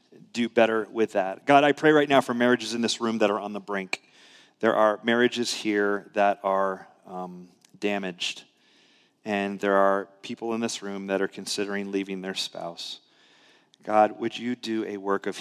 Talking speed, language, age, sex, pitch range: 185 wpm, English, 30-49, male, 90-105 Hz